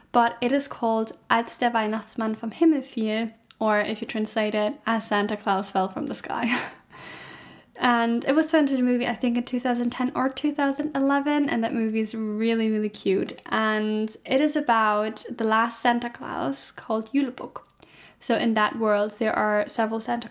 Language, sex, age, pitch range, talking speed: English, female, 10-29, 220-255 Hz, 175 wpm